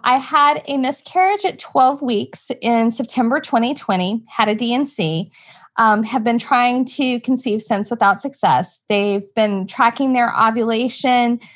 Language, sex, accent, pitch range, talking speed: English, female, American, 210-250 Hz, 140 wpm